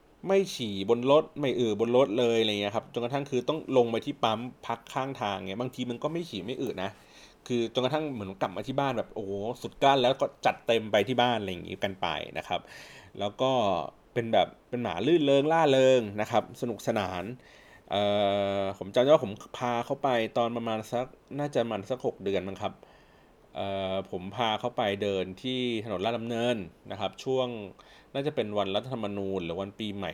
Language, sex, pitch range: Thai, male, 100-130 Hz